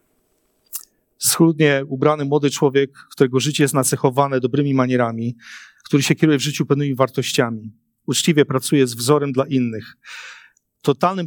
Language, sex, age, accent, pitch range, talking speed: Polish, male, 40-59, native, 125-150 Hz, 130 wpm